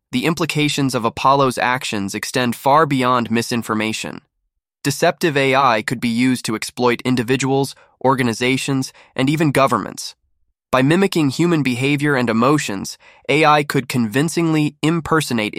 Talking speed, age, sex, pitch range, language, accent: 120 wpm, 20-39, male, 110-140 Hz, English, American